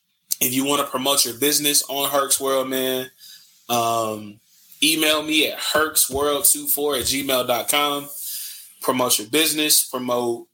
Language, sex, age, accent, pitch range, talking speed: English, male, 20-39, American, 125-150 Hz, 125 wpm